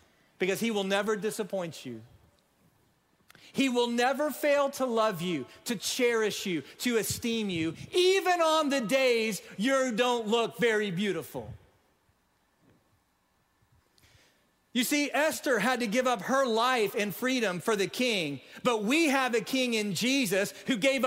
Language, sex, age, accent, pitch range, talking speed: English, male, 40-59, American, 220-275 Hz, 145 wpm